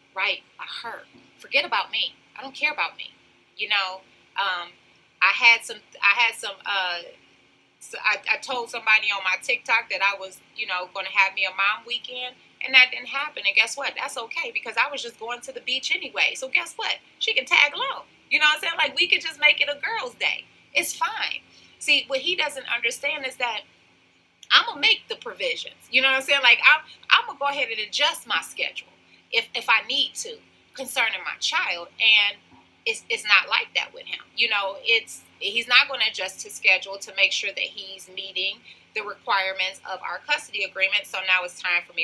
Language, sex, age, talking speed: English, female, 30-49, 220 wpm